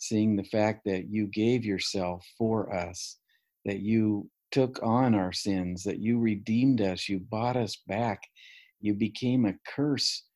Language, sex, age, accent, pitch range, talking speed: English, male, 50-69, American, 100-125 Hz, 155 wpm